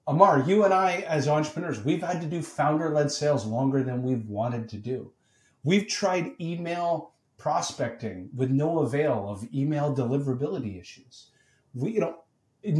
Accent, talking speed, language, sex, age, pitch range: American, 150 wpm, English, male, 40-59, 125-165 Hz